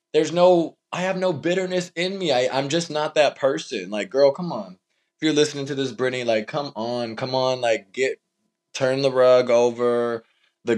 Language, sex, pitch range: English, male, 110-170 Hz